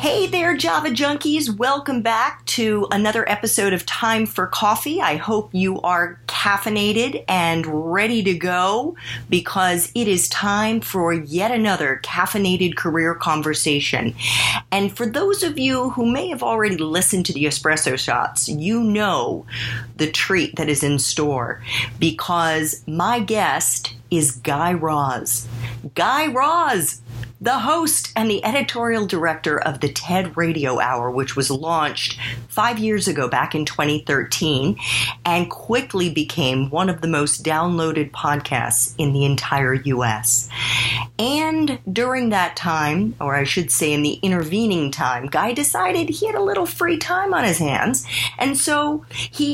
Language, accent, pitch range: English, American, 140-225 Hz